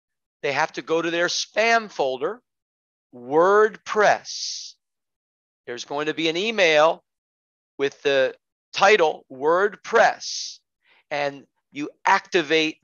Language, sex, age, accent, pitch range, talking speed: English, male, 40-59, American, 125-205 Hz, 105 wpm